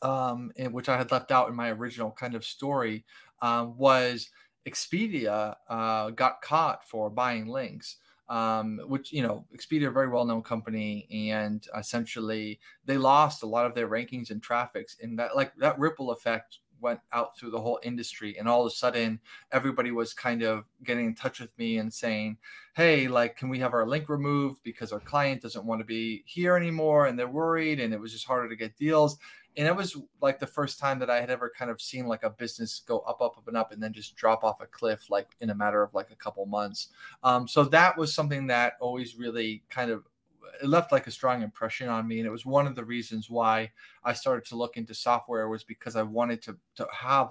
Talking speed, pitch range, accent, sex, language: 225 wpm, 110-130 Hz, American, male, English